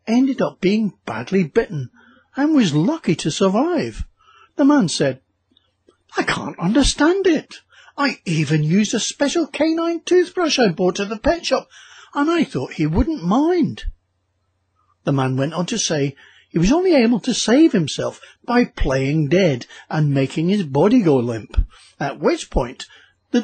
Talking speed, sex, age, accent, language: 160 wpm, male, 60-79, British, English